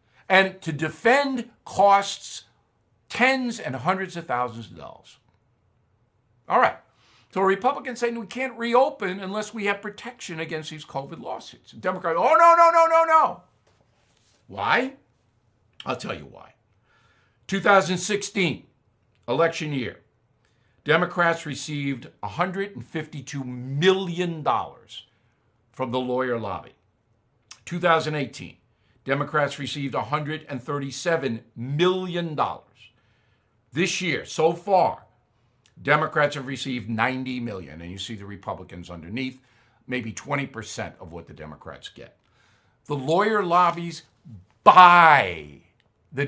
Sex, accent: male, American